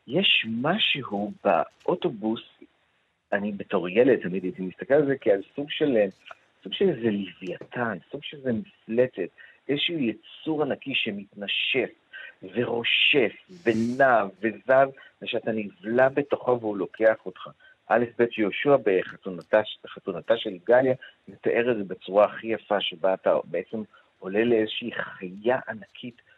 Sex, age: male, 50-69